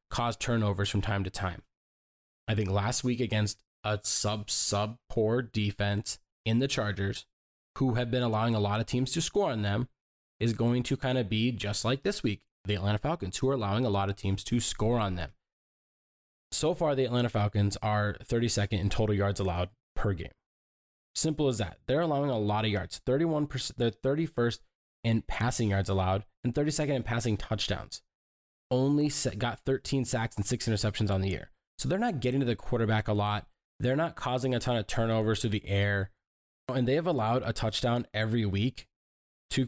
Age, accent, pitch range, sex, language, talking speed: 20-39, American, 100-125 Hz, male, English, 190 wpm